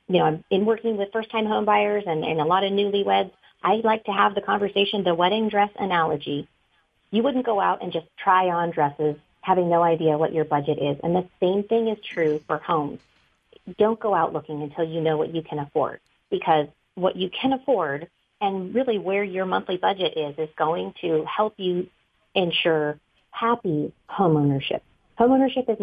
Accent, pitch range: American, 155-200 Hz